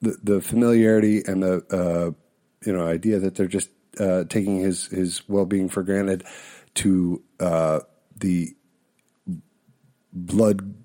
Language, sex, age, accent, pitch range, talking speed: English, male, 50-69, American, 80-100 Hz, 135 wpm